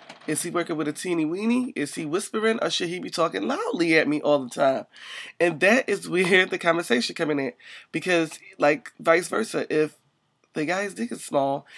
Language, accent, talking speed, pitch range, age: English, American, 205 wpm, 150-205 Hz, 30-49